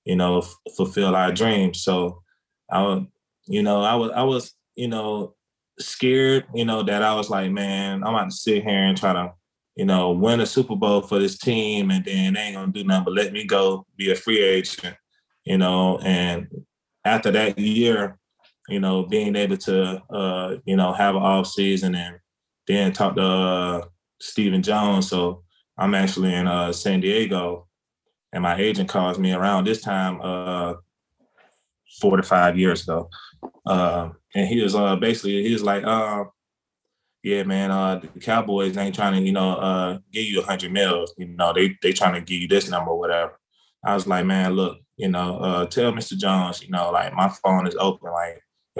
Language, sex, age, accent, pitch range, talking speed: English, male, 20-39, American, 90-105 Hz, 195 wpm